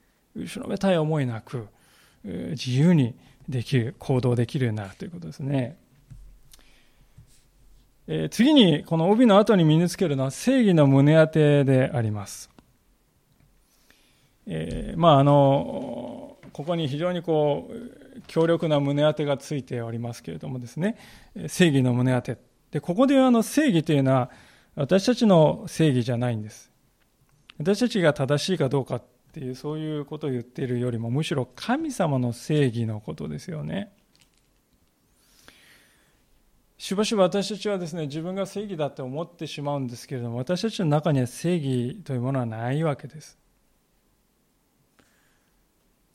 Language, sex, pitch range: Japanese, male, 130-175 Hz